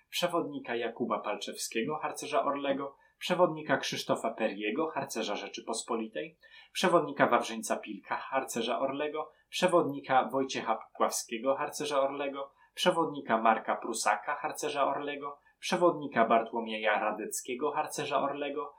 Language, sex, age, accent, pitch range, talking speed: Polish, male, 20-39, native, 130-150 Hz, 95 wpm